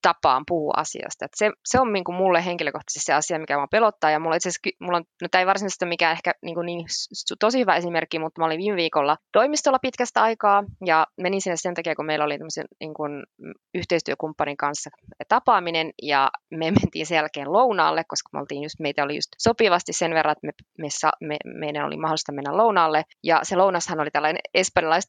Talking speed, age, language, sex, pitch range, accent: 195 wpm, 20-39, Finnish, female, 150-185 Hz, native